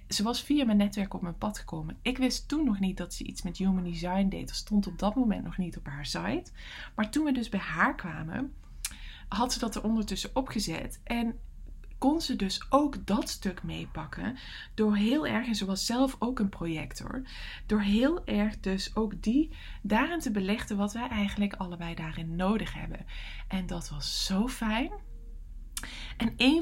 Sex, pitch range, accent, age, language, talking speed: female, 185-230 Hz, Dutch, 20-39, English, 190 wpm